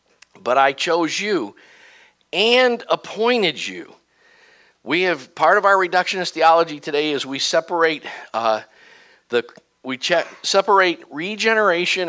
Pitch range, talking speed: 135-200 Hz, 115 wpm